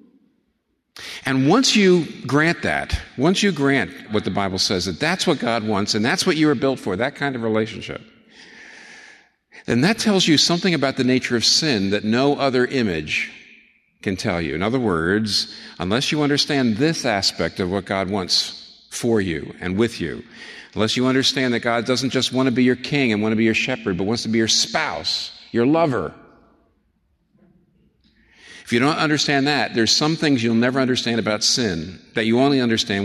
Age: 50-69